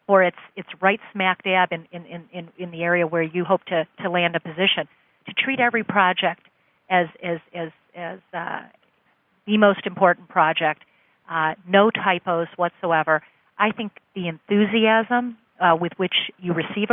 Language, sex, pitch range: English, female, 170-195 Hz